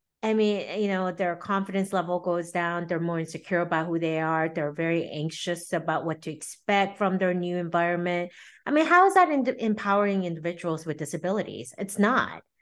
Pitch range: 160-195 Hz